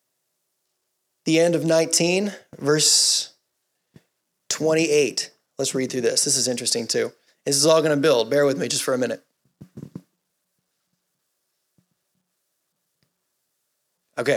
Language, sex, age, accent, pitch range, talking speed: English, male, 30-49, American, 145-180 Hz, 115 wpm